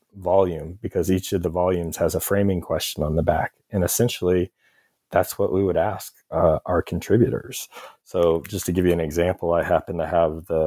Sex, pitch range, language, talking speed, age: male, 80-95 Hz, English, 195 wpm, 30-49